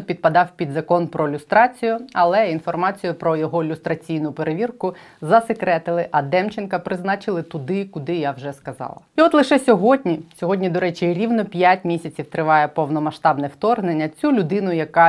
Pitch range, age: 160-215 Hz, 30-49